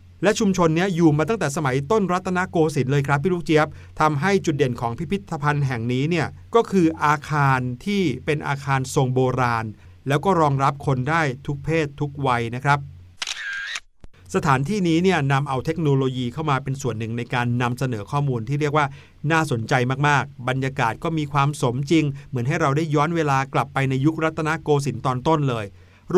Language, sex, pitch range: Thai, male, 130-160 Hz